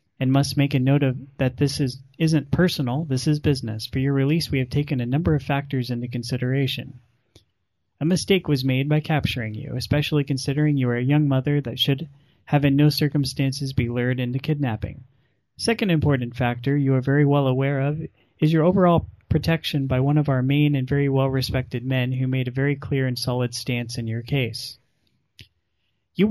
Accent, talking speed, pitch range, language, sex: American, 190 wpm, 125-145 Hz, English, male